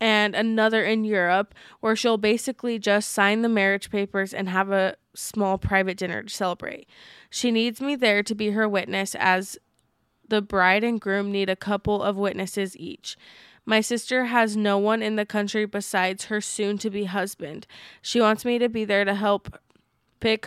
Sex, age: female, 20-39